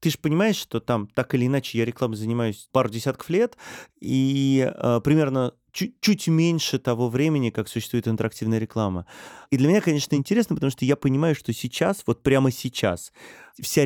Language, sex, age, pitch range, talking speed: Russian, male, 30-49, 110-135 Hz, 180 wpm